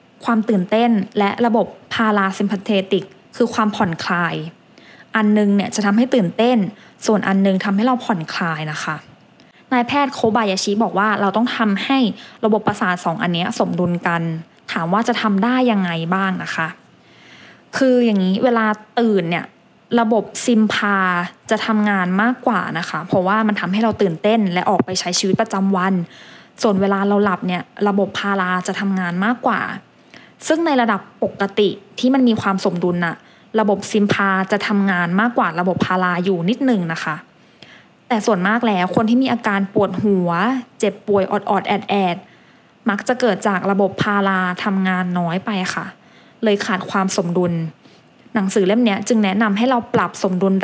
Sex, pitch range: female, 190-230 Hz